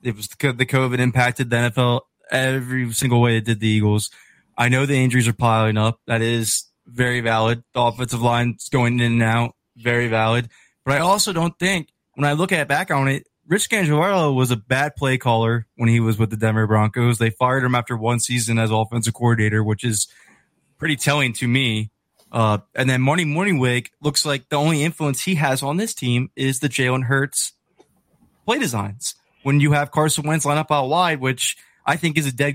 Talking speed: 210 wpm